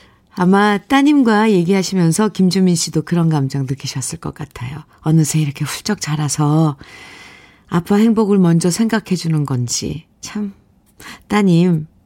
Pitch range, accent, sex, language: 155-215 Hz, native, female, Korean